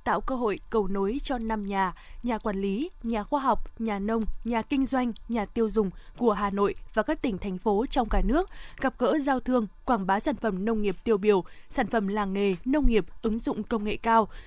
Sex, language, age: female, Vietnamese, 20-39